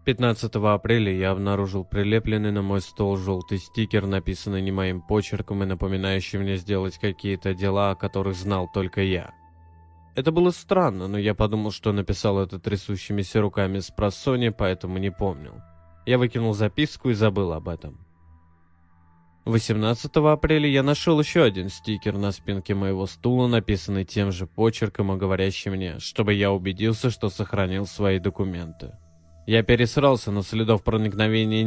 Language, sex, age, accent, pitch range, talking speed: Russian, male, 20-39, native, 95-110 Hz, 150 wpm